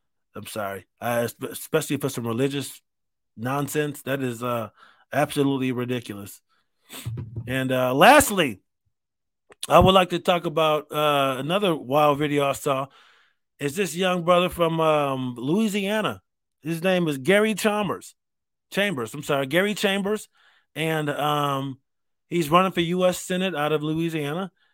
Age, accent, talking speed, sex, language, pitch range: 30-49, American, 130 wpm, male, English, 135-165 Hz